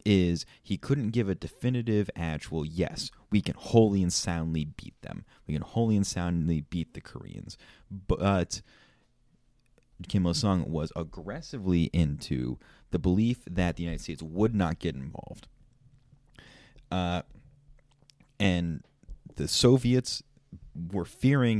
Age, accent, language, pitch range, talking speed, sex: 30-49, American, English, 80-120 Hz, 130 wpm, male